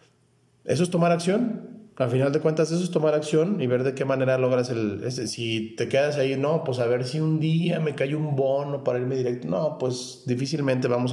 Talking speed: 225 wpm